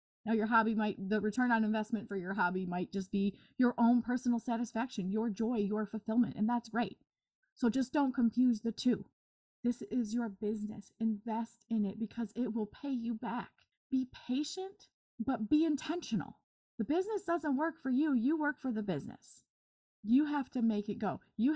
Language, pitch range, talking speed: English, 215-275 Hz, 185 wpm